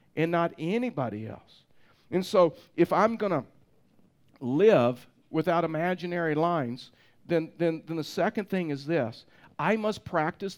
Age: 50-69